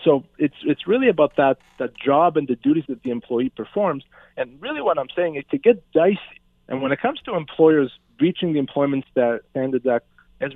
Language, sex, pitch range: English, male, 130-170 Hz